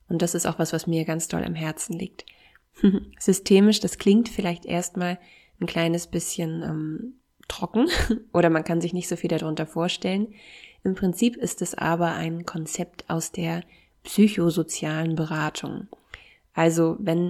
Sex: female